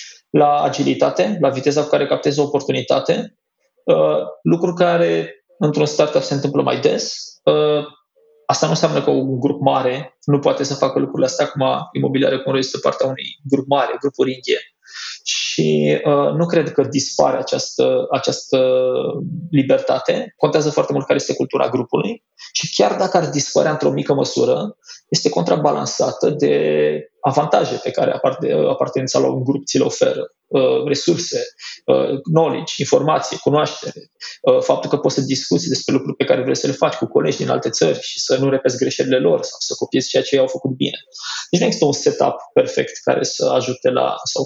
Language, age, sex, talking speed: Romanian, 20-39, male, 175 wpm